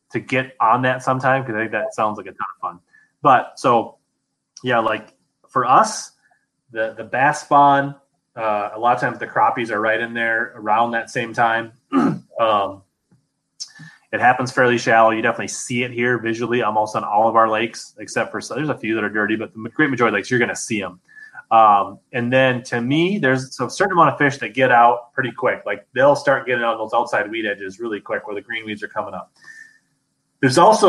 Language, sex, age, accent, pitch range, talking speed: English, male, 20-39, American, 110-135 Hz, 220 wpm